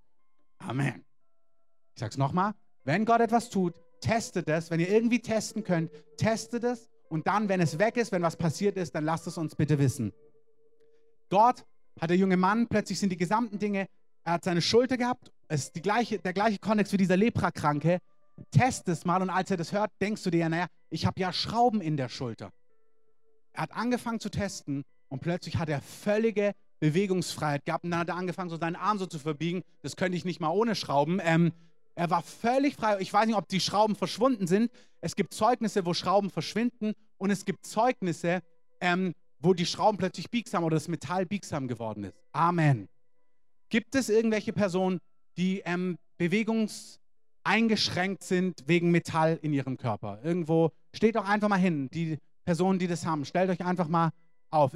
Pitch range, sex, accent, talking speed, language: 165-215 Hz, male, German, 190 wpm, German